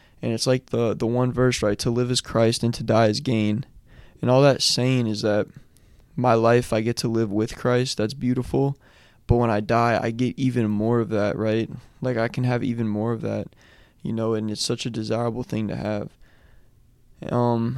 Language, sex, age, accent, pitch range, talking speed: English, male, 20-39, American, 110-125 Hz, 215 wpm